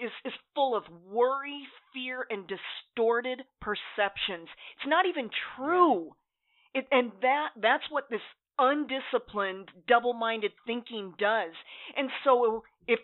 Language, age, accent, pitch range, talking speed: English, 40-59, American, 205-270 Hz, 120 wpm